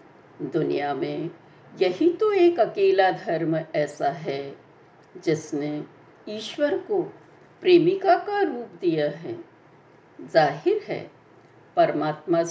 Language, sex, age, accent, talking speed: Hindi, female, 60-79, native, 95 wpm